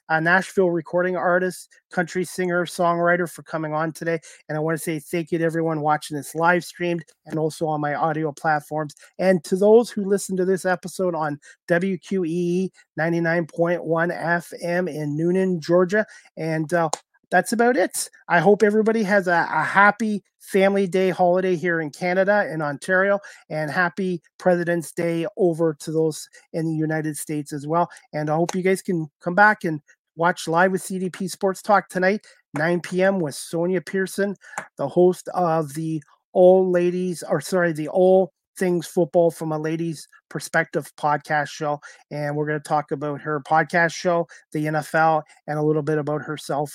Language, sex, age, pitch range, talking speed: English, male, 30-49, 155-185 Hz, 175 wpm